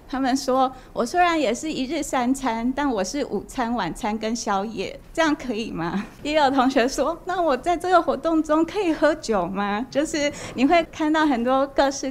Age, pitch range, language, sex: 20-39, 200-260 Hz, Chinese, female